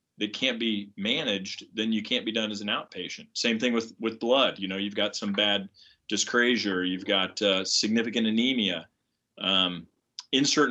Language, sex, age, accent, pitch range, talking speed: English, male, 30-49, American, 100-115 Hz, 175 wpm